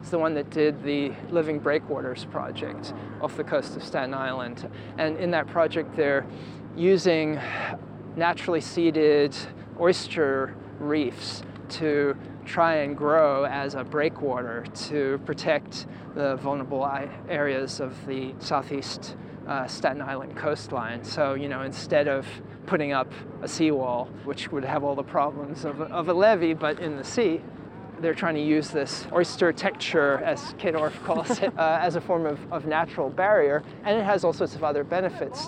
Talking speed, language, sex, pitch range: 155 wpm, English, male, 135-160 Hz